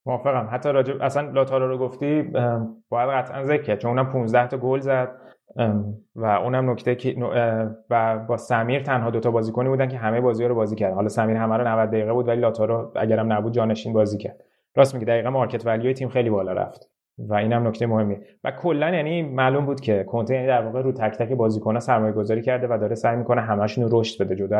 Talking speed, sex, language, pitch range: 210 wpm, male, Persian, 110-125 Hz